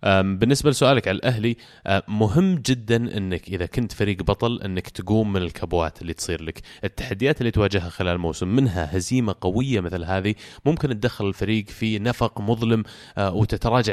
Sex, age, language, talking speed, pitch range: male, 20-39, Arabic, 155 wpm, 95-115 Hz